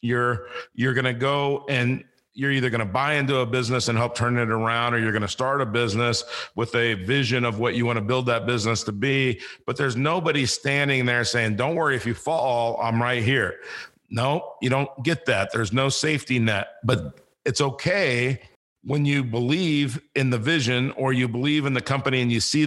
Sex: male